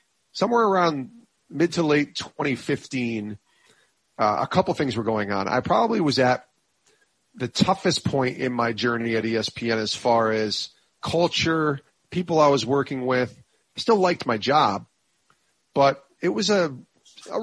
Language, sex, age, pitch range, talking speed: English, male, 40-59, 115-155 Hz, 150 wpm